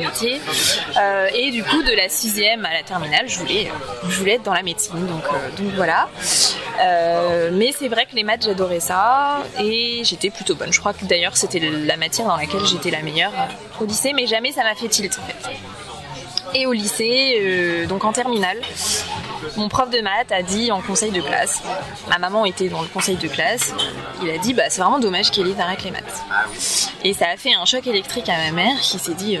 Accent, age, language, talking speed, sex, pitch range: French, 20-39, French, 225 wpm, female, 190-240 Hz